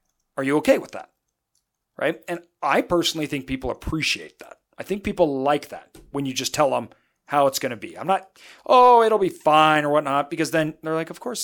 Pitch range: 130-170 Hz